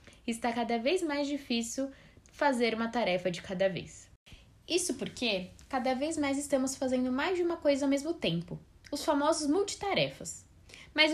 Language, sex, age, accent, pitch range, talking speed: Portuguese, female, 10-29, Brazilian, 230-295 Hz, 155 wpm